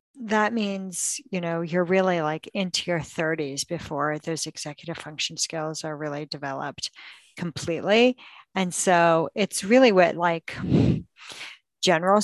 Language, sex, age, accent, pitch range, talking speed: English, female, 50-69, American, 165-205 Hz, 125 wpm